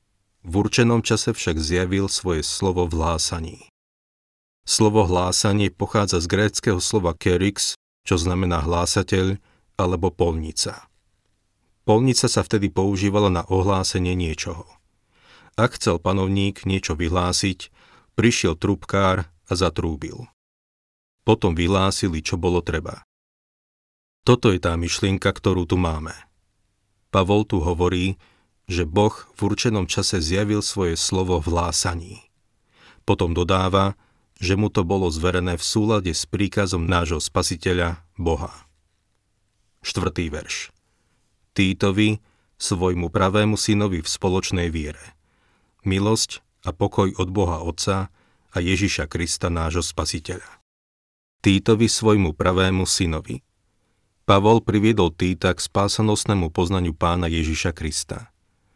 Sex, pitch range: male, 85-100 Hz